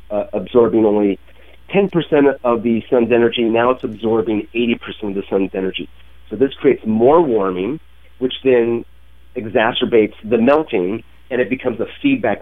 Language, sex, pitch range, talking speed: English, male, 100-130 Hz, 150 wpm